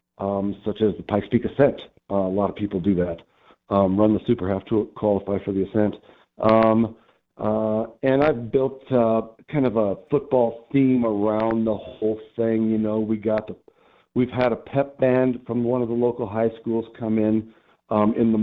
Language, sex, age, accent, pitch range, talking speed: English, male, 50-69, American, 100-120 Hz, 190 wpm